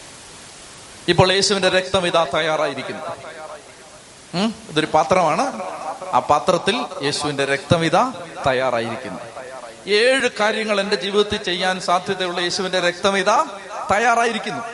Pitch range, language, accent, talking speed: 160-205 Hz, Malayalam, native, 80 wpm